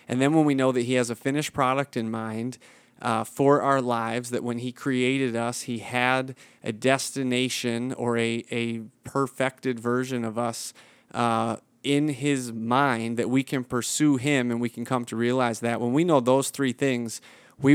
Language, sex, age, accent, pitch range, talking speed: English, male, 30-49, American, 115-130 Hz, 190 wpm